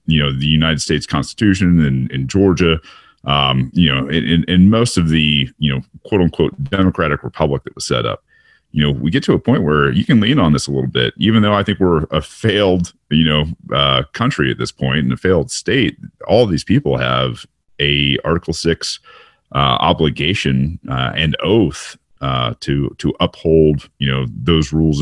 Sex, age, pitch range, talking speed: male, 40-59, 70-80 Hz, 195 wpm